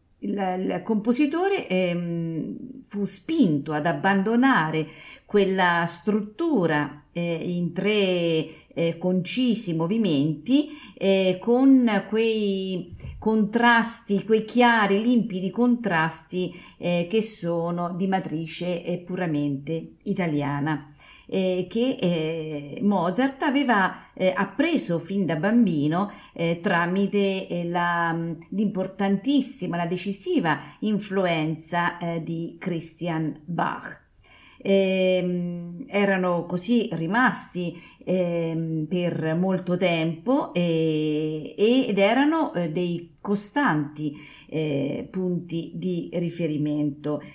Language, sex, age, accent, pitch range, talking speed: Italian, female, 40-59, native, 160-205 Hz, 90 wpm